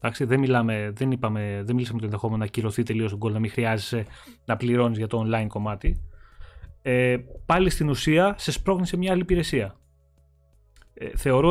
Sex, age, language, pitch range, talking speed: male, 20-39, Greek, 110-145 Hz, 160 wpm